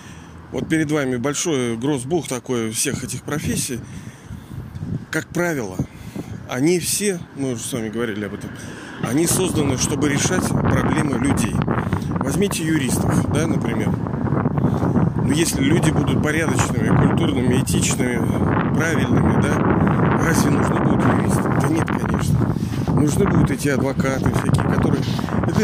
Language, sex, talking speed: Russian, male, 125 wpm